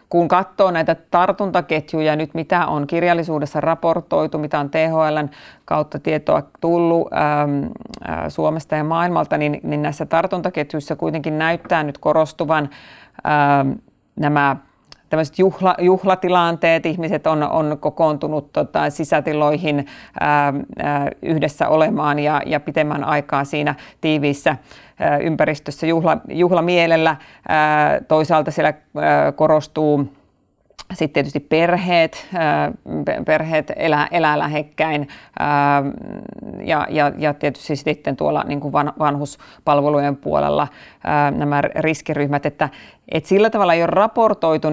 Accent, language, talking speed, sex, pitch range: native, Finnish, 105 wpm, female, 145-160 Hz